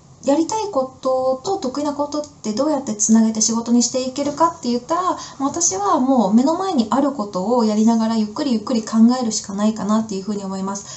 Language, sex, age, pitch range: Japanese, female, 20-39, 210-280 Hz